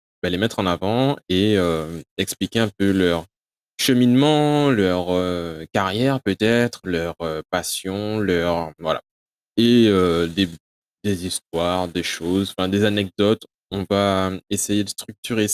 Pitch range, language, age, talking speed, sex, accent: 90-120 Hz, French, 20-39, 130 wpm, male, French